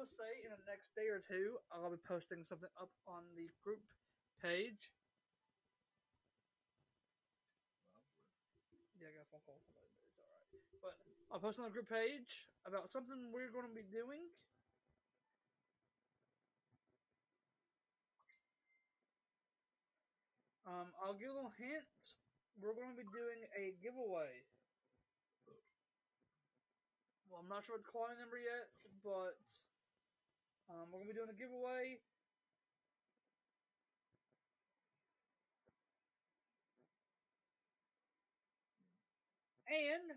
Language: English